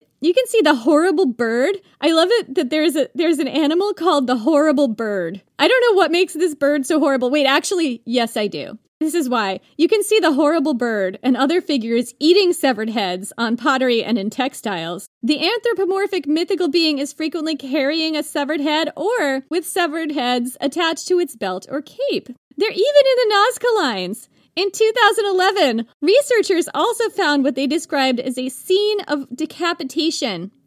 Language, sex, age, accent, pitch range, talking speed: English, female, 30-49, American, 245-335 Hz, 180 wpm